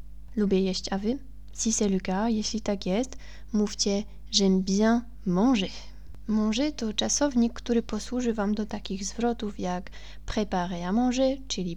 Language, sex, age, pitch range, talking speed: Polish, female, 20-39, 200-245 Hz, 145 wpm